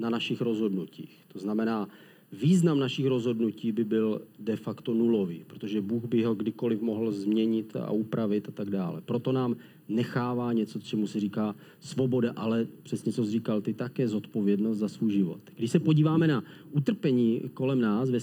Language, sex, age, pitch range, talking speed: Czech, male, 40-59, 115-140 Hz, 170 wpm